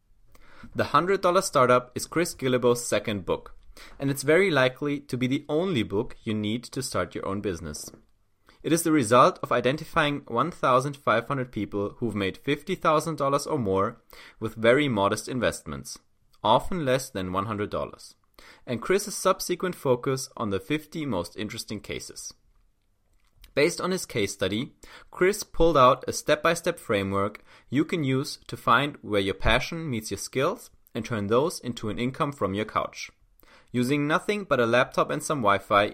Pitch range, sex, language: 105-145 Hz, male, English